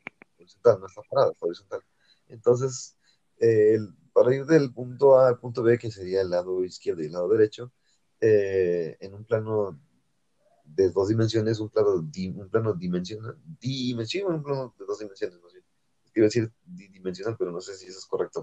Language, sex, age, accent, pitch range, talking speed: Spanish, male, 30-49, Mexican, 105-155 Hz, 180 wpm